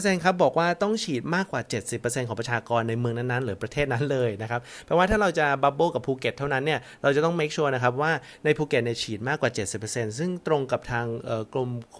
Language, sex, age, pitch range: Thai, male, 30-49, 120-150 Hz